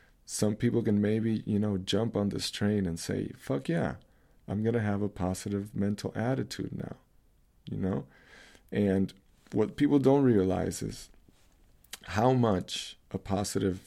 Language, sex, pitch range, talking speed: English, male, 90-105 Hz, 150 wpm